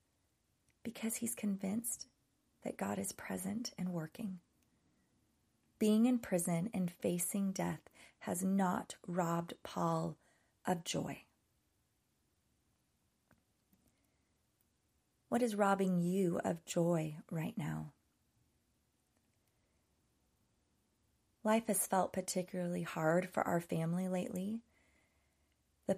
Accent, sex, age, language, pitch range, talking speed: American, female, 30-49, English, 165-190 Hz, 90 wpm